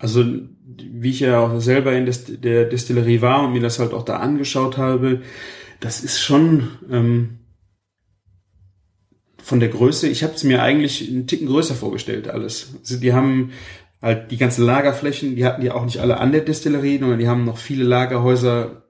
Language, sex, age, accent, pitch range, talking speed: German, male, 30-49, German, 115-135 Hz, 180 wpm